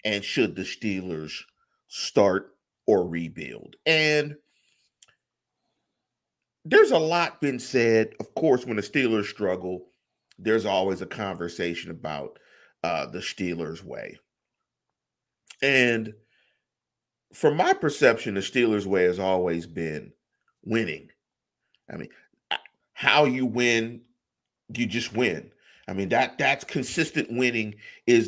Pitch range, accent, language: 105-150 Hz, American, English